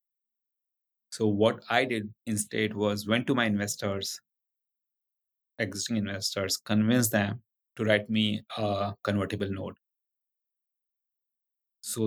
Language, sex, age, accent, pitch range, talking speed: English, male, 30-49, Indian, 100-110 Hz, 105 wpm